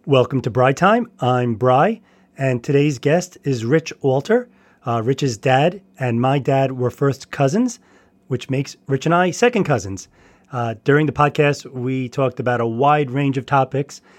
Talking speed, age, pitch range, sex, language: 170 wpm, 30-49, 125-150 Hz, male, English